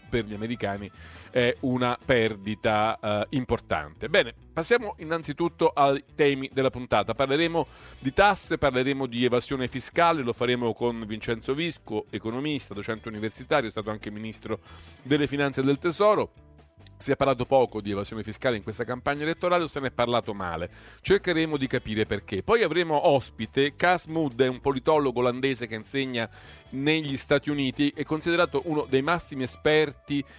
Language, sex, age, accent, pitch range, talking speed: Italian, male, 40-59, native, 110-145 Hz, 160 wpm